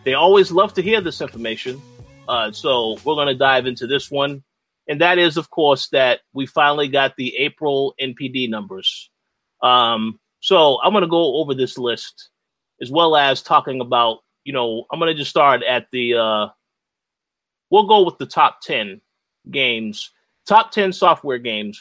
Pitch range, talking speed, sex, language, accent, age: 125-175 Hz, 175 wpm, male, English, American, 30-49